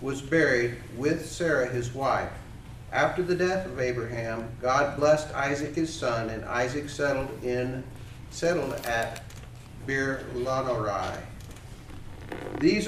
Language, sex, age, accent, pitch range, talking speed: English, male, 50-69, American, 115-150 Hz, 110 wpm